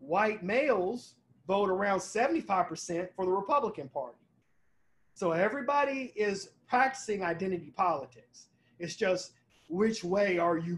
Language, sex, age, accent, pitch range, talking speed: English, male, 30-49, American, 160-195 Hz, 115 wpm